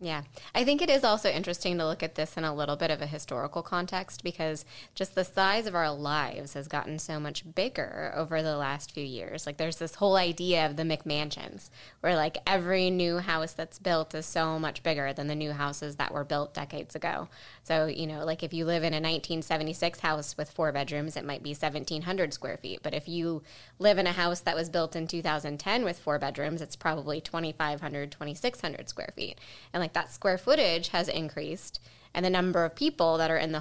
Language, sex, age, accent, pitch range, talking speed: English, female, 20-39, American, 150-185 Hz, 215 wpm